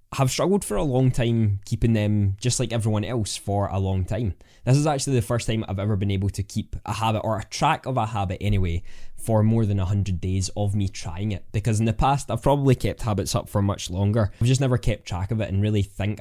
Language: English